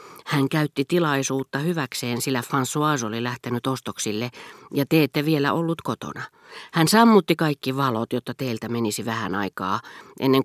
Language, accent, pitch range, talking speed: Finnish, native, 120-160 Hz, 145 wpm